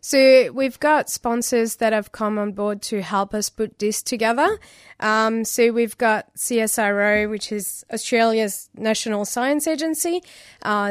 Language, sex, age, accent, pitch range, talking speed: English, female, 20-39, Australian, 210-240 Hz, 150 wpm